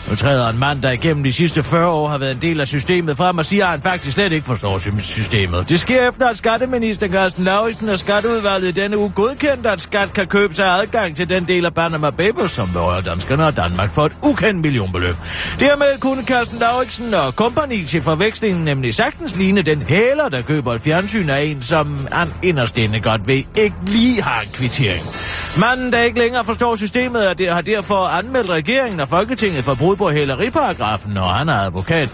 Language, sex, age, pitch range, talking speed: Danish, male, 40-59, 125-200 Hz, 210 wpm